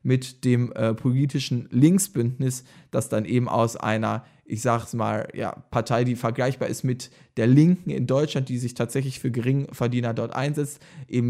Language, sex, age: German, male, 20-39